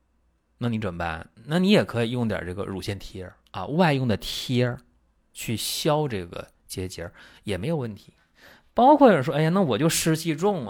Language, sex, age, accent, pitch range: Chinese, male, 30-49, native, 85-140 Hz